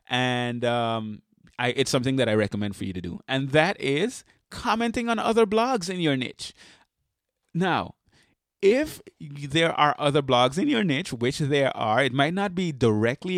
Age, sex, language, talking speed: 30-49, male, English, 170 wpm